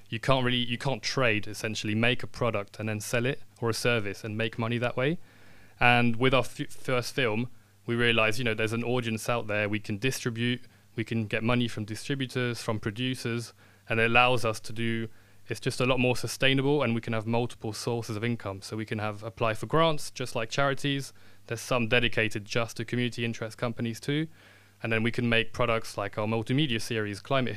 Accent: British